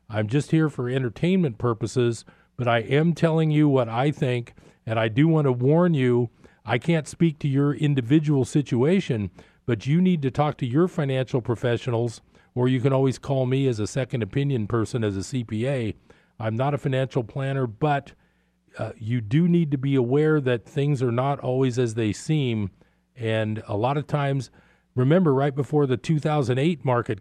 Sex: male